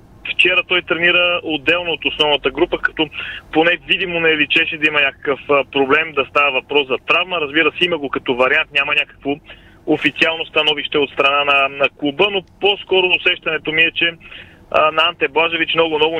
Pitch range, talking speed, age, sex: 140-175 Hz, 175 wpm, 30-49, male